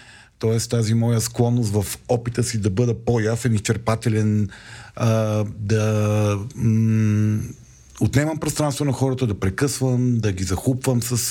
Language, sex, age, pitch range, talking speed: Bulgarian, male, 40-59, 100-120 Hz, 135 wpm